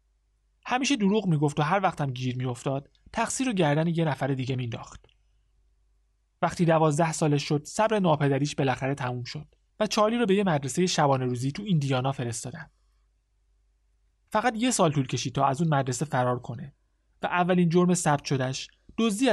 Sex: male